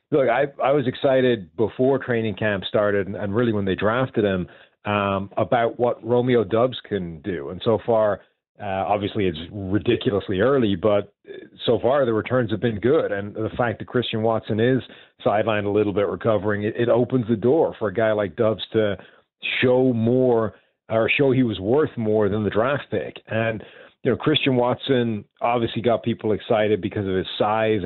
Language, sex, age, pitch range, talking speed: English, male, 40-59, 105-120 Hz, 185 wpm